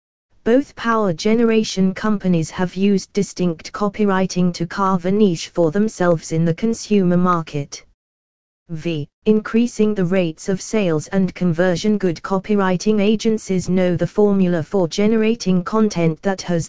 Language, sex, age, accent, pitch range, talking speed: English, female, 20-39, British, 170-210 Hz, 135 wpm